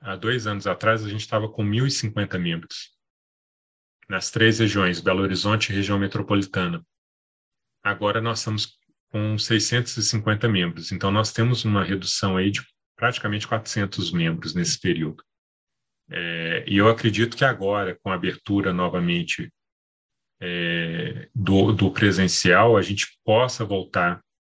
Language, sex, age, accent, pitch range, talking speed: Portuguese, male, 30-49, Brazilian, 95-115 Hz, 130 wpm